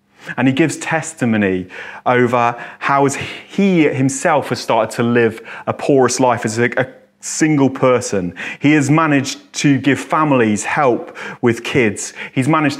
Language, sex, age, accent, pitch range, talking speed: English, male, 30-49, British, 110-145 Hz, 140 wpm